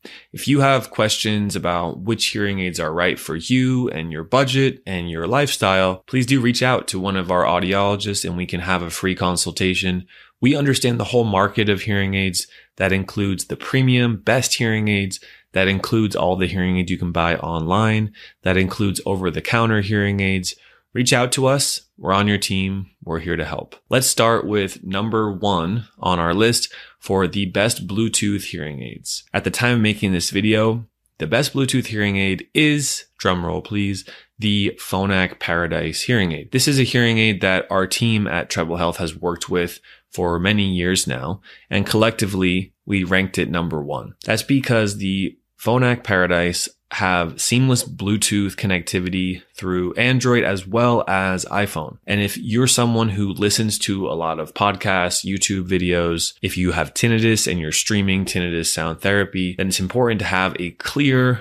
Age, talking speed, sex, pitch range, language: 20-39, 175 wpm, male, 90-110 Hz, English